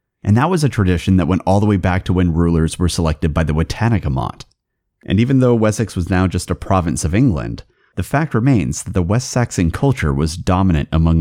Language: English